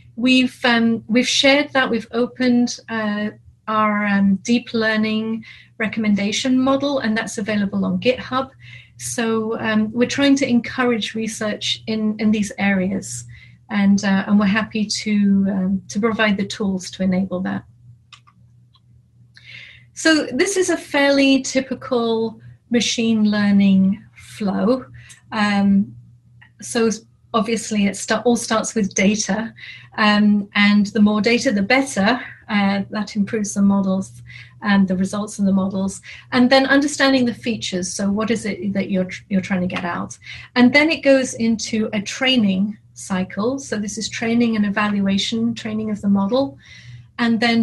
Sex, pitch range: female, 195-235 Hz